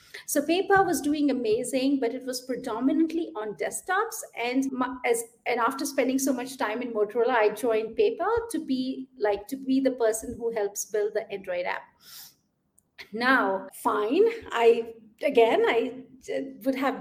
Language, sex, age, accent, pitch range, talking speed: English, female, 50-69, Indian, 250-335 Hz, 160 wpm